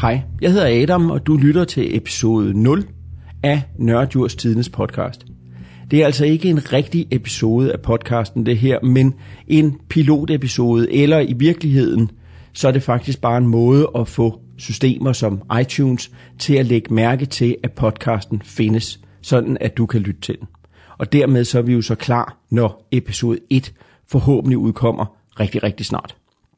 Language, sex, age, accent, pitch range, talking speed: Danish, male, 40-59, native, 115-150 Hz, 165 wpm